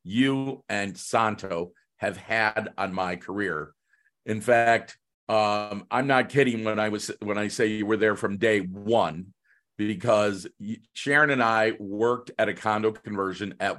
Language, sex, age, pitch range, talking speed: English, male, 50-69, 105-125 Hz, 150 wpm